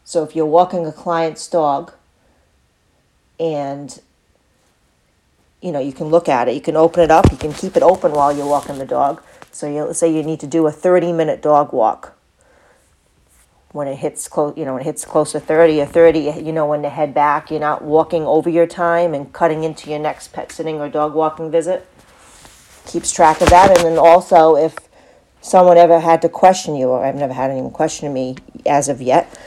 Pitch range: 145-170 Hz